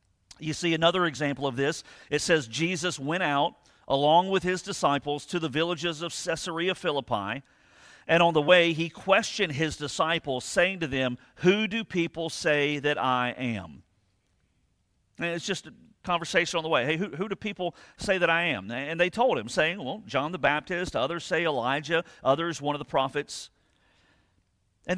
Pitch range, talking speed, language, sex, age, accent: 125-175 Hz, 180 wpm, English, male, 50-69, American